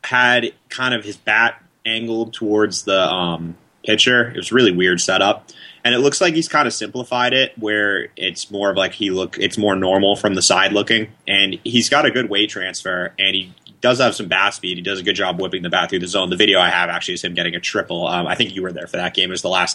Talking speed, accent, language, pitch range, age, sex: 260 wpm, American, English, 90-115 Hz, 30-49, male